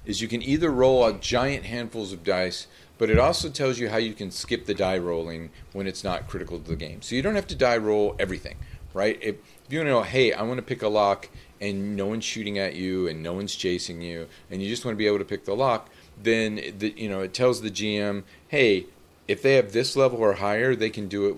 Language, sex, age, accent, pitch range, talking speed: English, male, 40-59, American, 90-110 Hz, 260 wpm